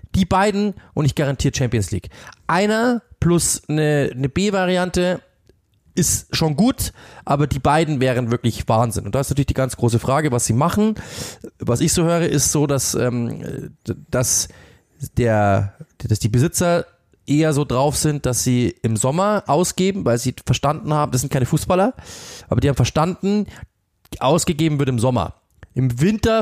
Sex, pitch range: male, 120-165 Hz